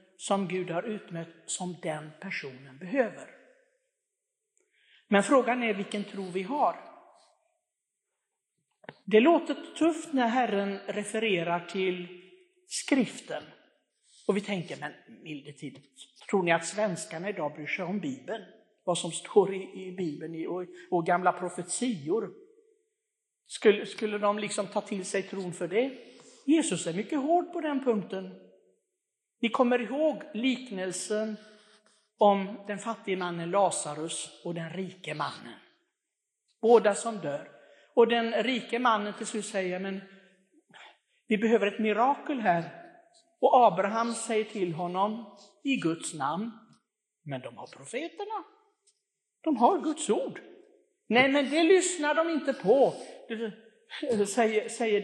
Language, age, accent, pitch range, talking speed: Swedish, 60-79, native, 185-275 Hz, 125 wpm